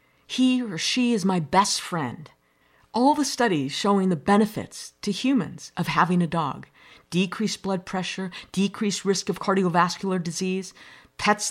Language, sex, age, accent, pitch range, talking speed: English, female, 50-69, American, 180-250 Hz, 145 wpm